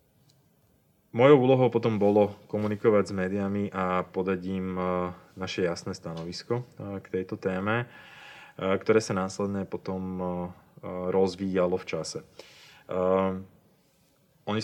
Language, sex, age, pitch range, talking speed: Slovak, male, 30-49, 95-105 Hz, 95 wpm